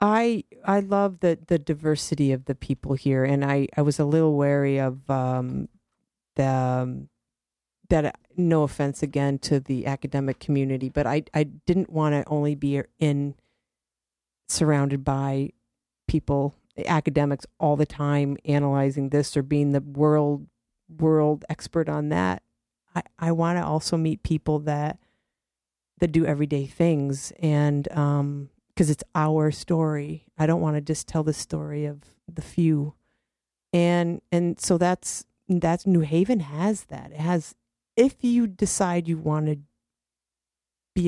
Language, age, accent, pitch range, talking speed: English, 40-59, American, 140-165 Hz, 150 wpm